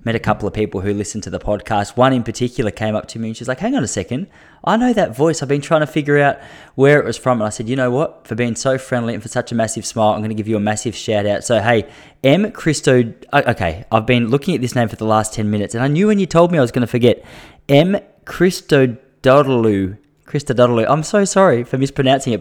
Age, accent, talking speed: 20-39, Australian, 270 wpm